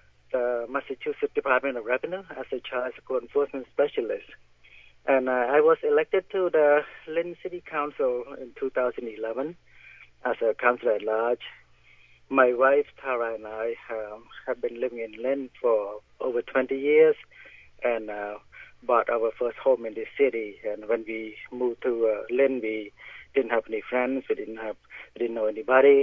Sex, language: male, English